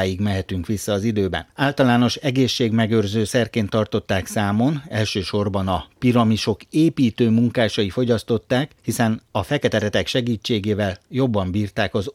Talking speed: 110 wpm